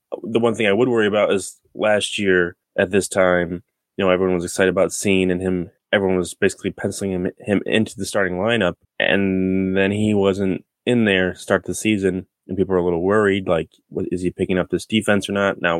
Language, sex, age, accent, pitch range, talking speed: English, male, 20-39, American, 90-105 Hz, 220 wpm